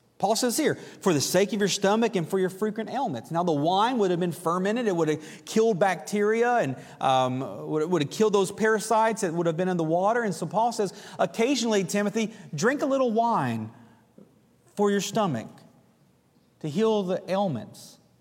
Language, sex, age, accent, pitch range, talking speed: English, male, 40-59, American, 145-205 Hz, 190 wpm